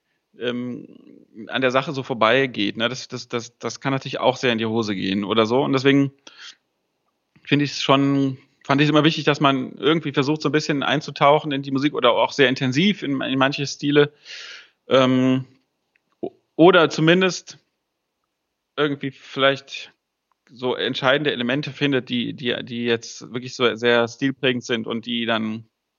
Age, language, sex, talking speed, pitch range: 30-49, German, male, 165 wpm, 125-145 Hz